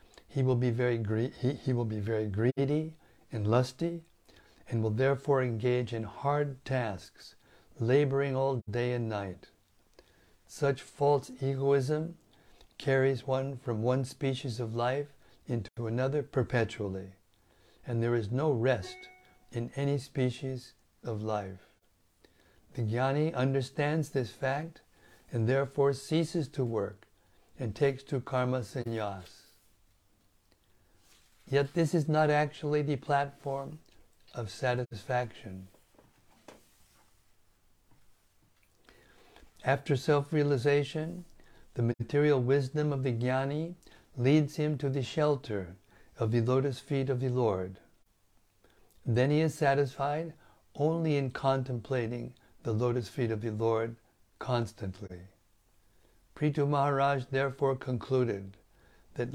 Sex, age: male, 60-79